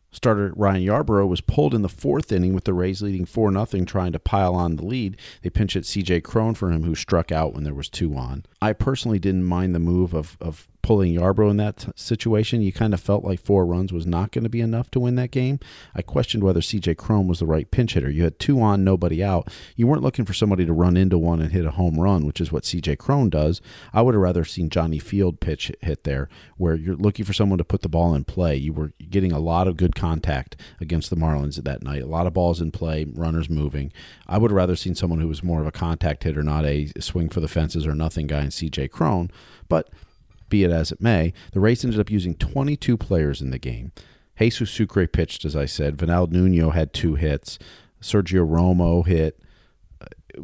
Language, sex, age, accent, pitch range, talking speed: English, male, 40-59, American, 80-100 Hz, 240 wpm